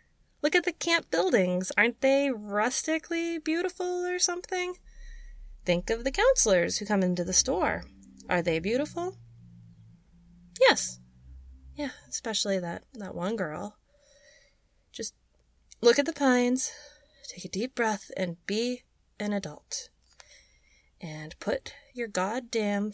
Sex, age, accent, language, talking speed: female, 30-49, American, English, 125 wpm